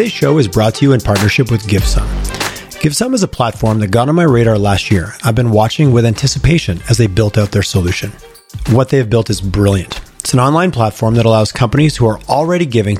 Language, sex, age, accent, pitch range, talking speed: English, male, 30-49, American, 105-135 Hz, 225 wpm